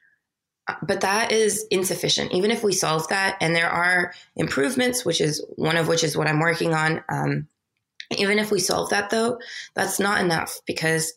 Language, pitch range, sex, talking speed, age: English, 155-185 Hz, female, 185 wpm, 20-39